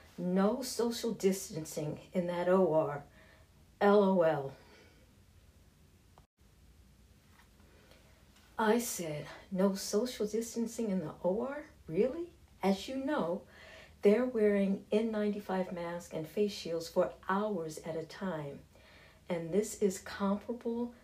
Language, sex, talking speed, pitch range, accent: English, female, 100 wpm, 150-195 Hz, American